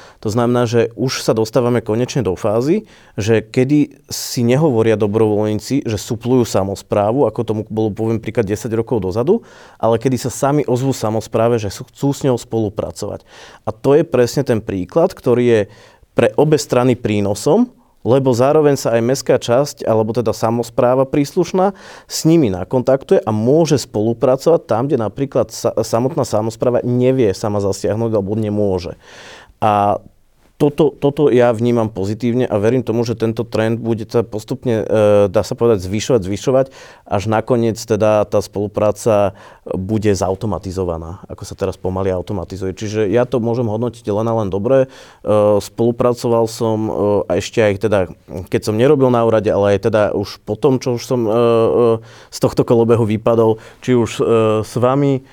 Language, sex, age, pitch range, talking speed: Slovak, male, 30-49, 105-125 Hz, 160 wpm